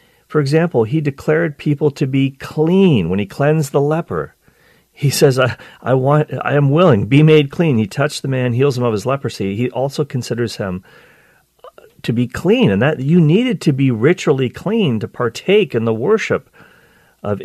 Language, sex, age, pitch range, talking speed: English, male, 40-59, 110-150 Hz, 185 wpm